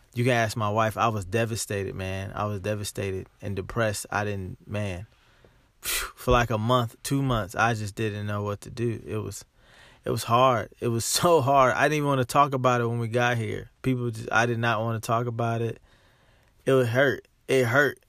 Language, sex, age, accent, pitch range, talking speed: English, male, 20-39, American, 105-125 Hz, 220 wpm